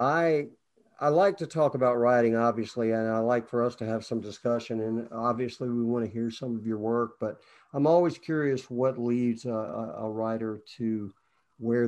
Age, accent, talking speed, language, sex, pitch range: 50-69, American, 190 wpm, English, male, 110-130 Hz